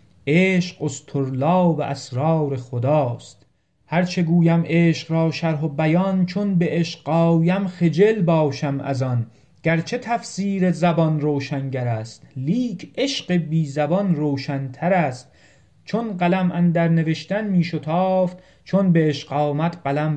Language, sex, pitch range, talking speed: Persian, male, 135-170 Hz, 120 wpm